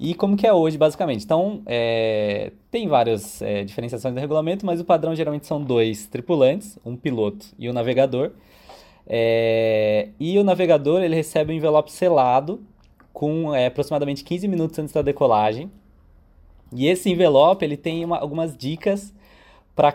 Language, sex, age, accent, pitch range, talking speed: Portuguese, male, 20-39, Brazilian, 120-170 Hz, 140 wpm